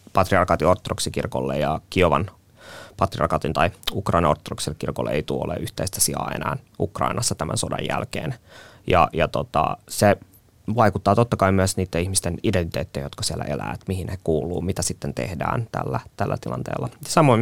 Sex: male